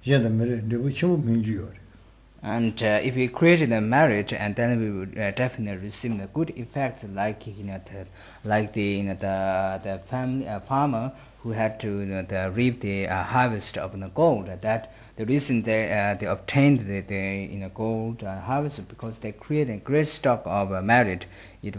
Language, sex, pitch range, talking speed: Italian, male, 100-125 Hz, 195 wpm